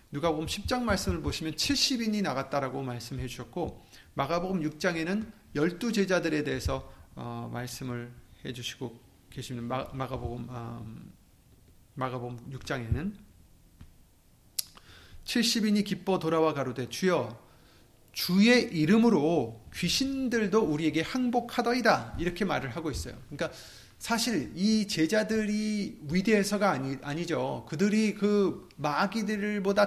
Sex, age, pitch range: male, 30-49, 130-215 Hz